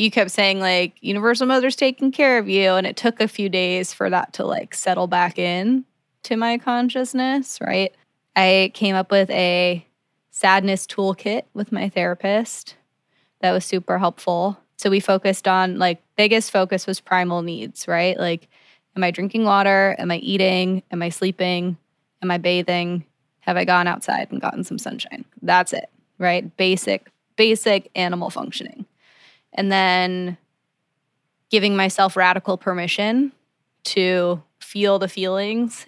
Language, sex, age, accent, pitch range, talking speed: English, female, 20-39, American, 180-205 Hz, 150 wpm